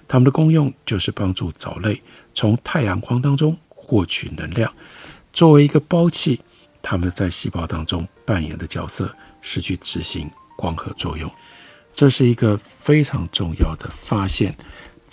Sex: male